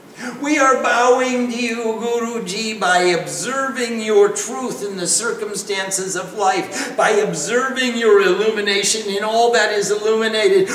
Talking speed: 135 wpm